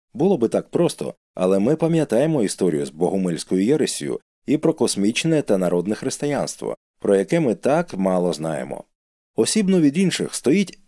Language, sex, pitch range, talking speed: Ukrainian, male, 95-145 Hz, 150 wpm